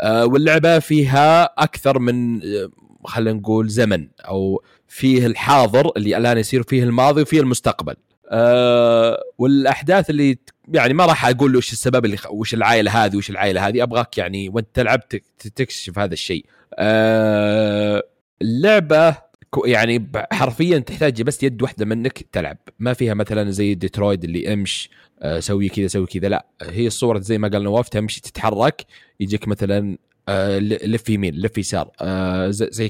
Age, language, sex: 30-49, Arabic, male